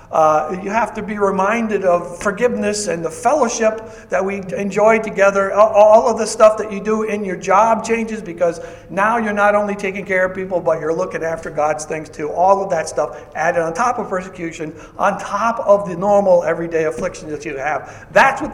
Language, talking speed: English, 205 wpm